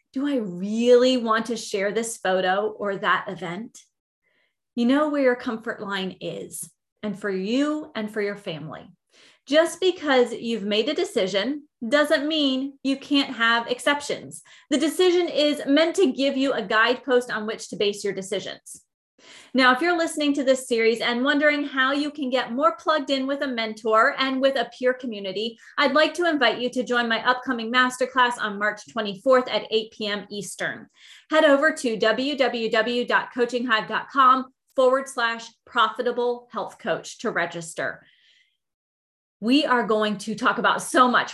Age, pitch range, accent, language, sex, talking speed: 30-49, 215-275 Hz, American, English, female, 165 wpm